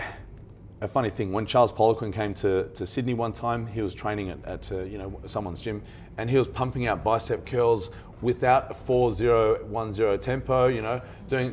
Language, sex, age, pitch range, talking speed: English, male, 40-59, 100-125 Hz, 200 wpm